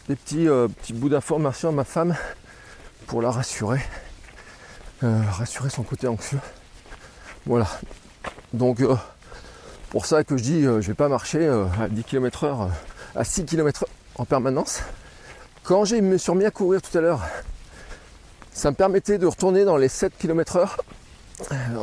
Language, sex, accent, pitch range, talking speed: French, male, French, 115-165 Hz, 175 wpm